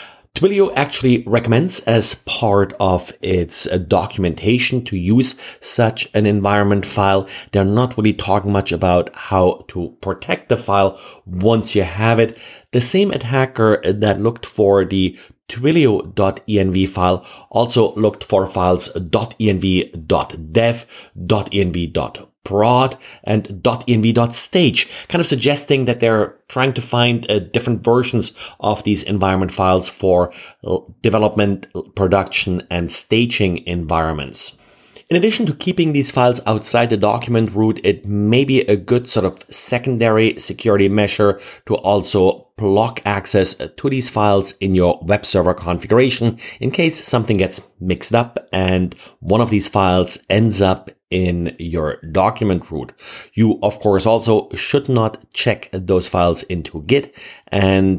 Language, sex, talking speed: English, male, 130 wpm